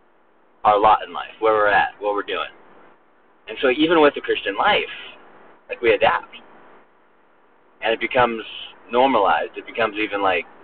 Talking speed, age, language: 160 wpm, 30-49, English